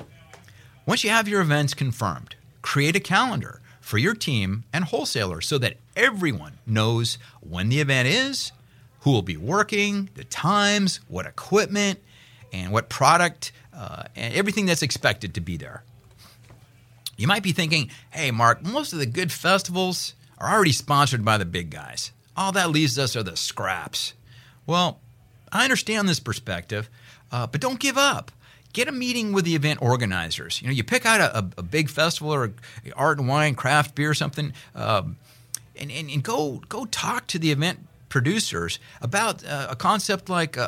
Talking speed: 175 wpm